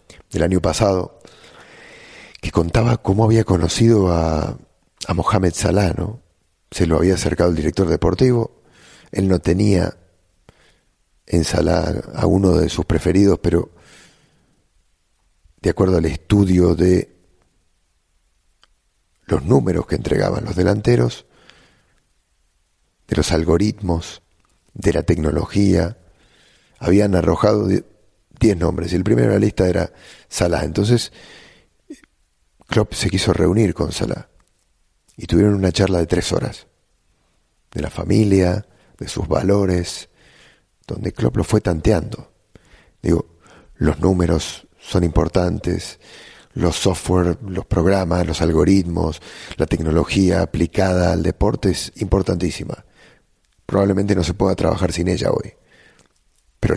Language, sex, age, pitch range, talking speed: English, male, 40-59, 85-100 Hz, 115 wpm